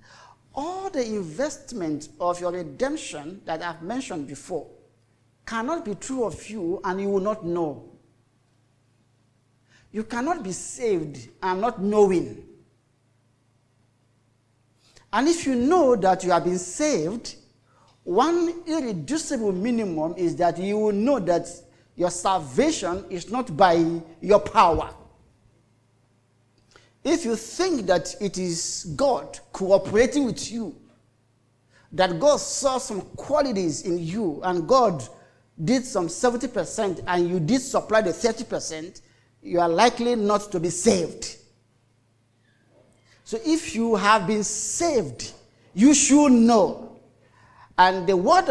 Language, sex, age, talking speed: English, male, 50-69, 120 wpm